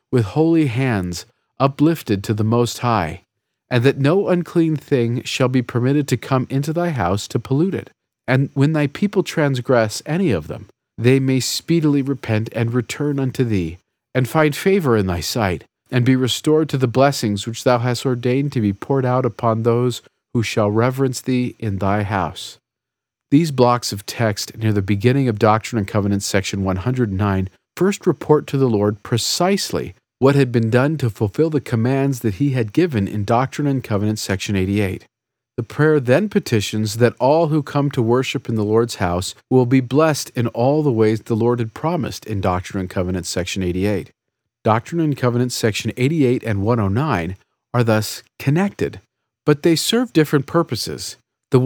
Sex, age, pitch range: male, 40-59, 110-140 Hz